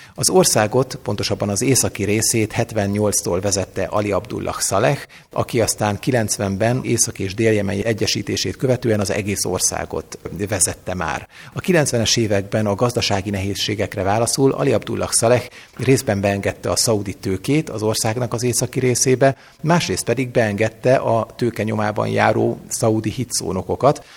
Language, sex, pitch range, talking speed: Hungarian, male, 100-125 Hz, 130 wpm